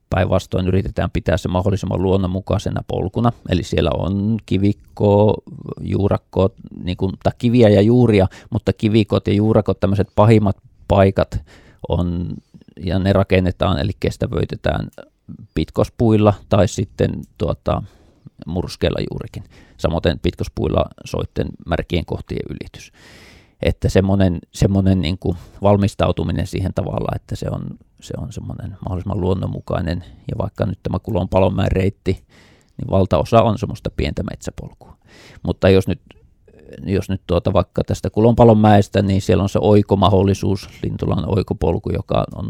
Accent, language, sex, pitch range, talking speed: native, Finnish, male, 90-105 Hz, 125 wpm